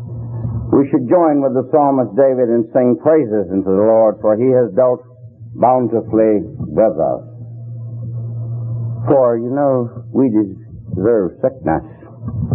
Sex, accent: male, American